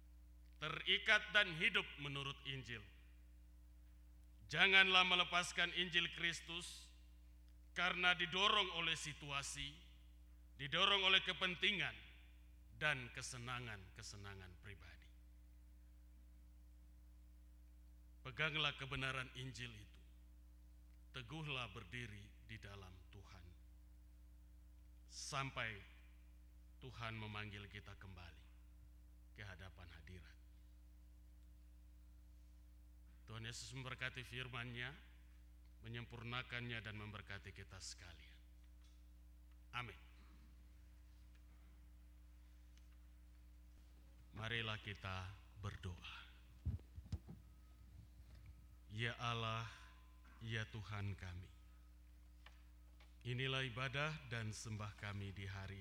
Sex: male